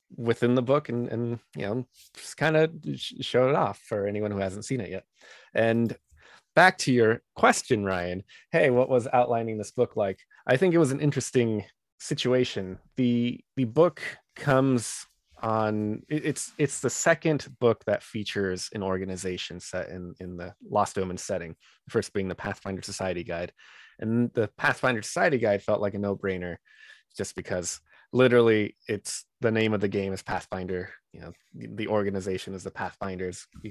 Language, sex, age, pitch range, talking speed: English, male, 20-39, 95-120 Hz, 170 wpm